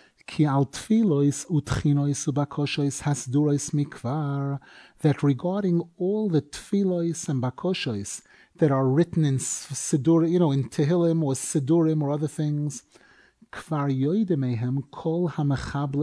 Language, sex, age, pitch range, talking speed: English, male, 30-49, 140-175 Hz, 80 wpm